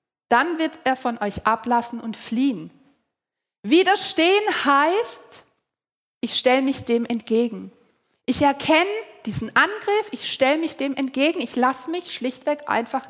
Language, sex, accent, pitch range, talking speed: German, female, German, 240-330 Hz, 135 wpm